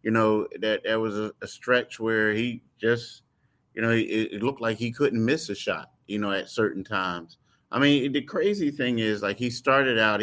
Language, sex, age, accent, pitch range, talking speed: English, male, 30-49, American, 110-125 Hz, 215 wpm